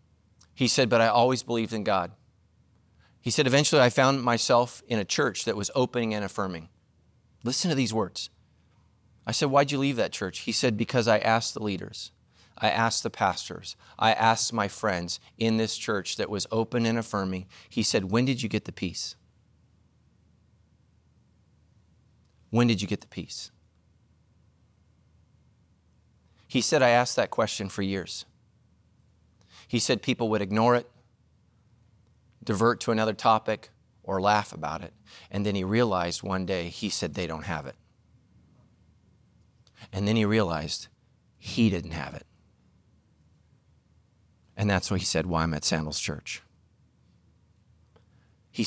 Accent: American